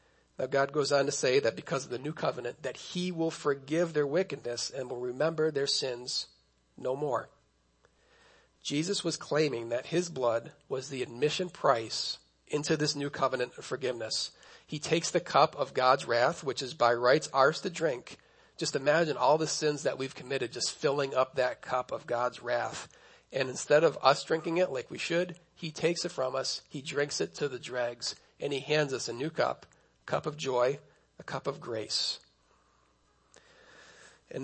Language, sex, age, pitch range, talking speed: English, male, 40-59, 125-155 Hz, 185 wpm